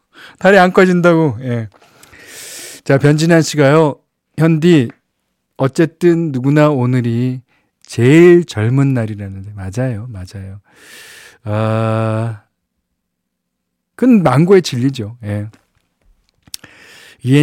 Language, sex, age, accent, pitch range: Korean, male, 40-59, native, 110-155 Hz